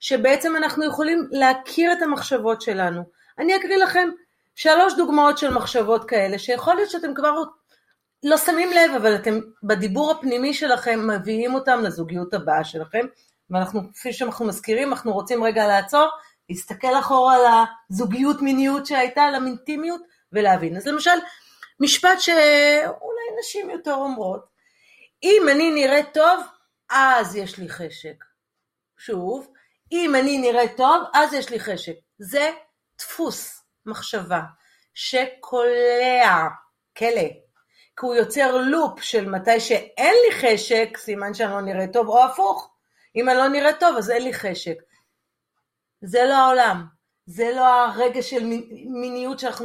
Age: 30-49